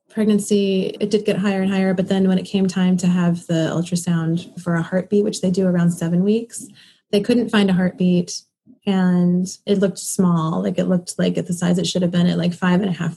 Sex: female